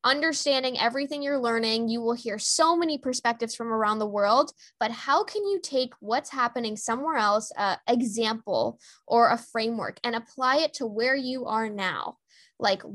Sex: female